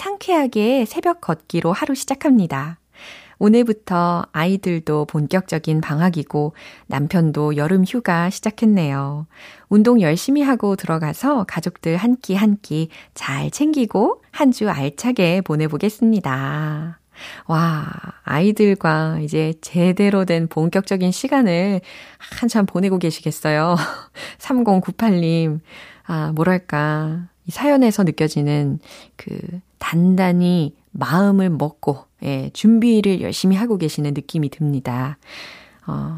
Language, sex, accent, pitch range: Korean, female, native, 155-220 Hz